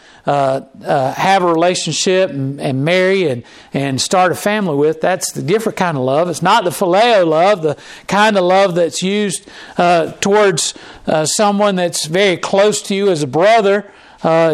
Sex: male